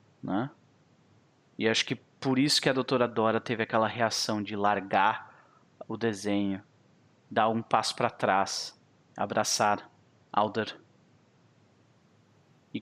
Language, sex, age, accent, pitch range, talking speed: Portuguese, male, 30-49, Brazilian, 105-130 Hz, 115 wpm